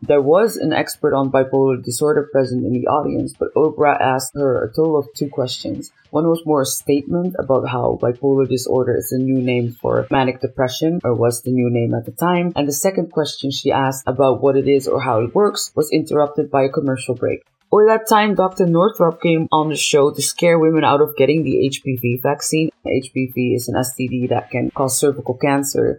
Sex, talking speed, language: female, 210 wpm, English